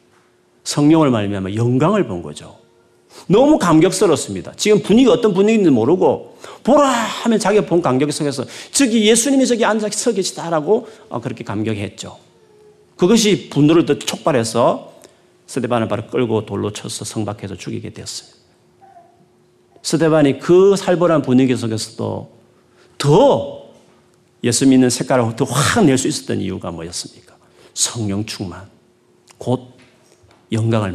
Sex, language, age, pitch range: male, Korean, 40-59, 110-180 Hz